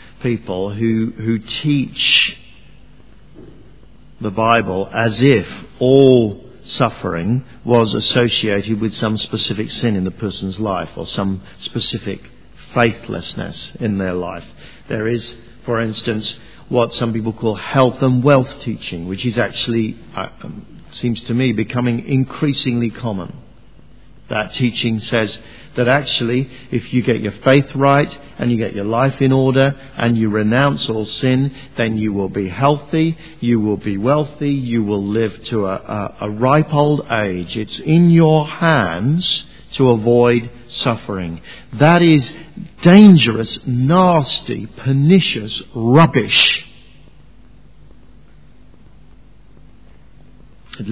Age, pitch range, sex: 50-69, 110-140 Hz, male